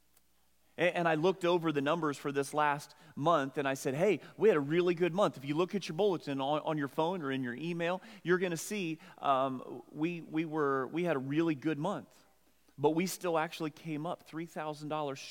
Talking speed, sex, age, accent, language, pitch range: 215 wpm, male, 30-49, American, English, 135-170 Hz